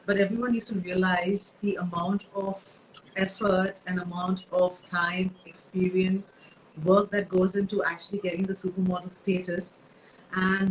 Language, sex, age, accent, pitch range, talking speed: Hindi, female, 30-49, native, 180-205 Hz, 135 wpm